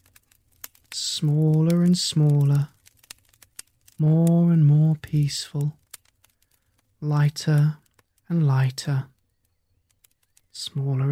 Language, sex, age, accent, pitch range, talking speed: English, male, 20-39, British, 100-155 Hz, 60 wpm